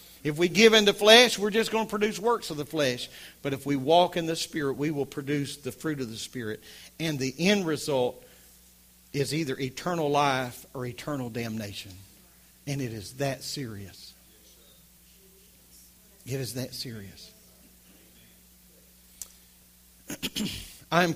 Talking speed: 145 wpm